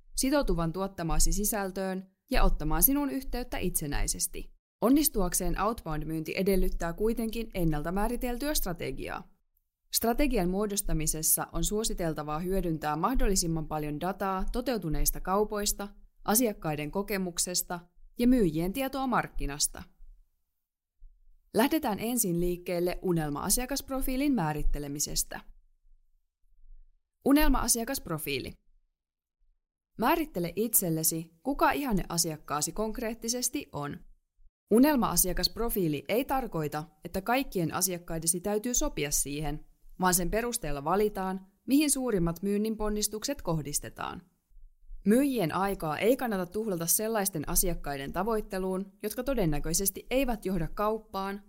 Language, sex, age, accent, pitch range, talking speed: Finnish, female, 20-39, native, 155-220 Hz, 85 wpm